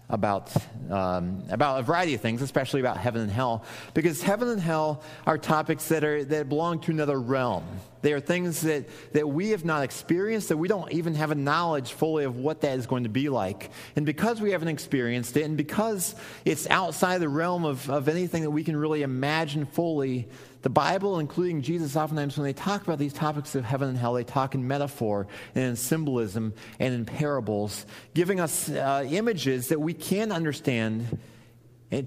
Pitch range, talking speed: 120-155 Hz, 195 wpm